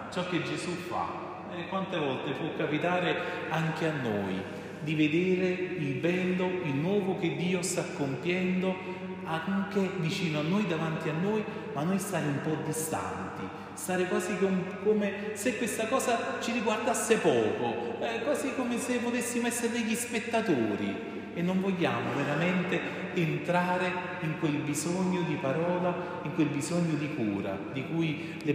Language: Italian